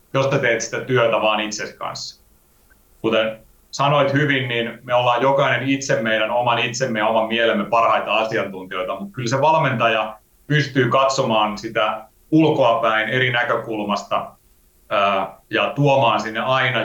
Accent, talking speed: native, 140 wpm